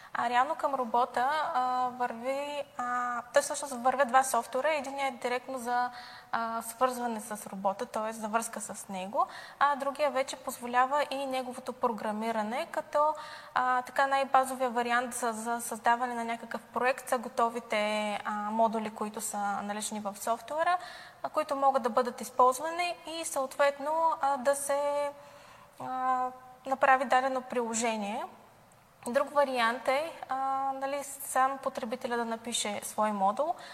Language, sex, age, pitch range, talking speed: Bulgarian, female, 20-39, 230-275 Hz, 135 wpm